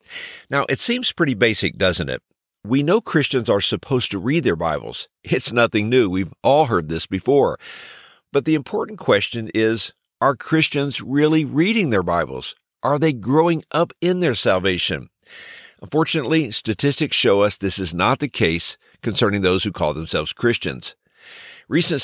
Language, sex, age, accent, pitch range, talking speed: English, male, 50-69, American, 100-150 Hz, 160 wpm